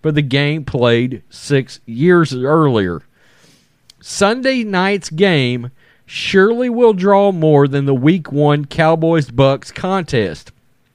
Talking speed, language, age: 115 wpm, English, 40-59